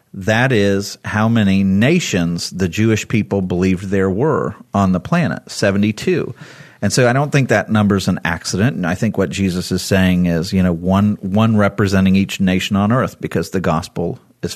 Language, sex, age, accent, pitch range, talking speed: English, male, 40-59, American, 100-120 Hz, 195 wpm